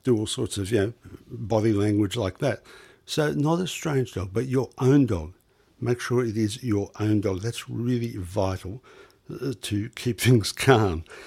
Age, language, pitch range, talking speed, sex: 60-79, English, 105-125 Hz, 175 wpm, male